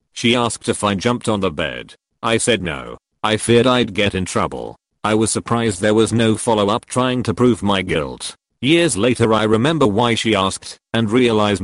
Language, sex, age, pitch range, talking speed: English, male, 40-59, 105-120 Hz, 200 wpm